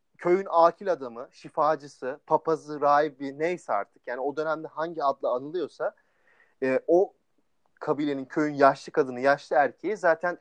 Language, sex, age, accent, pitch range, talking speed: Turkish, male, 30-49, native, 140-180 Hz, 135 wpm